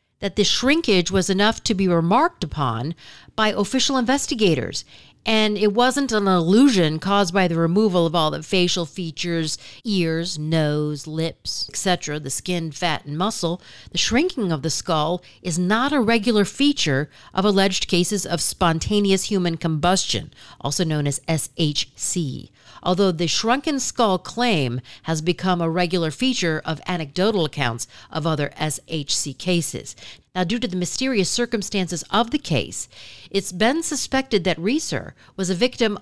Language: English